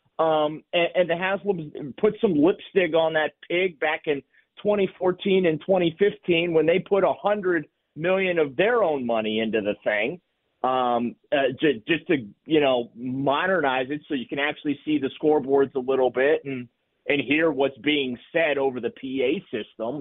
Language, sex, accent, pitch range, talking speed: English, male, American, 140-180 Hz, 170 wpm